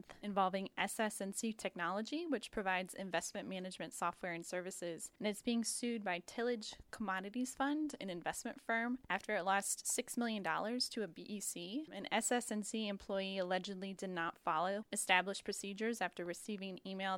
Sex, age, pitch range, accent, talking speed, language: female, 10-29, 180-220 Hz, American, 145 wpm, English